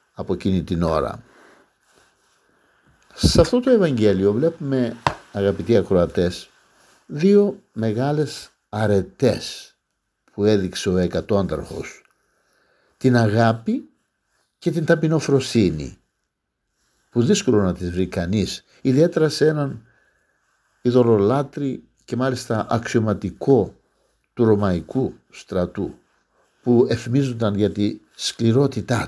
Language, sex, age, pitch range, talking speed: Greek, male, 60-79, 100-165 Hz, 90 wpm